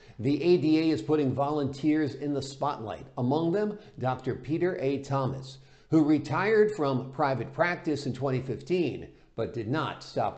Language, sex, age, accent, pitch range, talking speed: English, male, 50-69, American, 130-165 Hz, 145 wpm